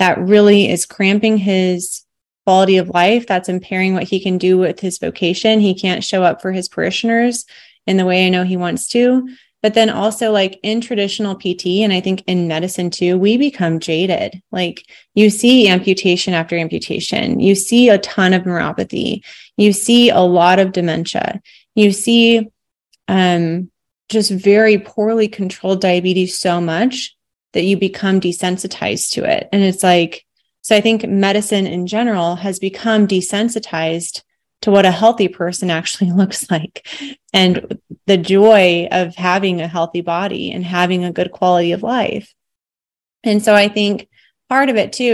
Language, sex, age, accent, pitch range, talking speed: English, female, 30-49, American, 180-220 Hz, 165 wpm